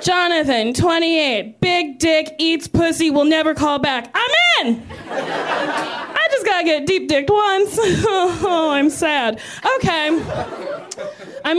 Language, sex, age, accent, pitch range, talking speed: English, female, 20-39, American, 225-295 Hz, 120 wpm